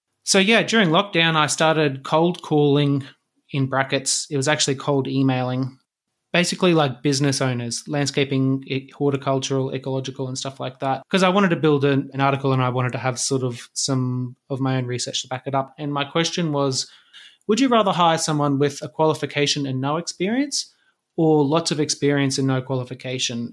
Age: 20-39